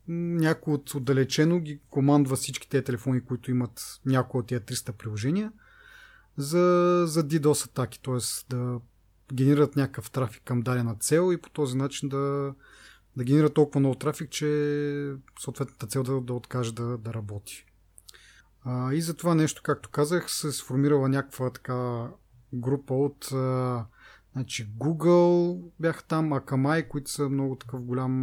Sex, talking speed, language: male, 145 wpm, Bulgarian